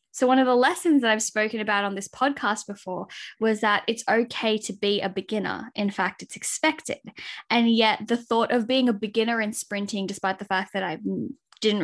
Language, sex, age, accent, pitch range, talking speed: English, female, 10-29, Australian, 200-245 Hz, 210 wpm